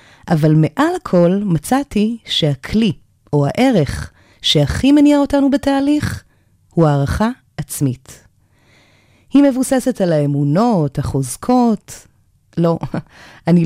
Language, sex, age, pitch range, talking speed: Hebrew, female, 30-49, 135-215 Hz, 90 wpm